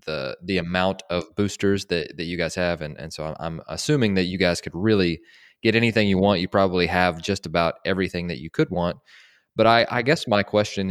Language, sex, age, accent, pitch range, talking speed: English, male, 20-39, American, 85-100 Hz, 225 wpm